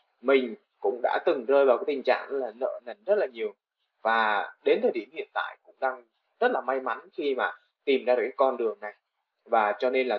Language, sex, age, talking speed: Vietnamese, male, 20-39, 235 wpm